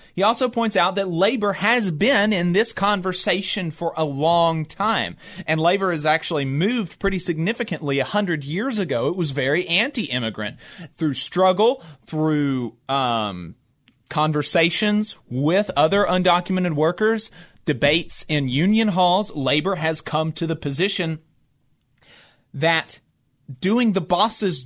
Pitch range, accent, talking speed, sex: 140-205 Hz, American, 130 wpm, male